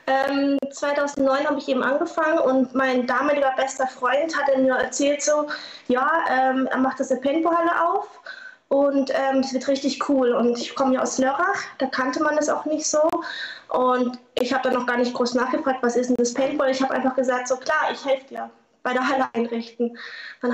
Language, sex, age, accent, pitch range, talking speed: German, female, 20-39, German, 245-285 Hz, 200 wpm